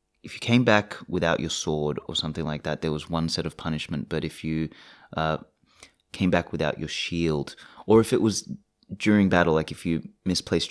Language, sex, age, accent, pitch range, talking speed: English, male, 20-39, Australian, 80-90 Hz, 200 wpm